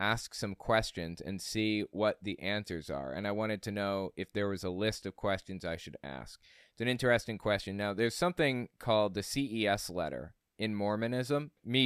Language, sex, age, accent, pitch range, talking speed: English, male, 20-39, American, 100-125 Hz, 190 wpm